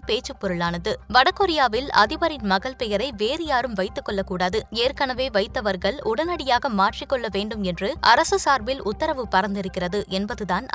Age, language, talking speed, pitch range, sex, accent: 20-39, Tamil, 115 wpm, 200-270 Hz, female, native